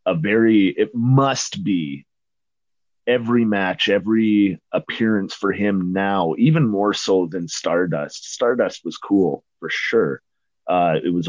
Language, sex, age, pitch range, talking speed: English, male, 30-49, 85-105 Hz, 135 wpm